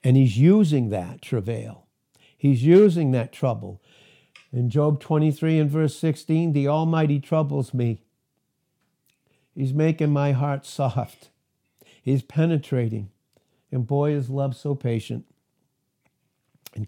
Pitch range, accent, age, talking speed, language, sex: 120-145 Hz, American, 60-79, 115 wpm, English, male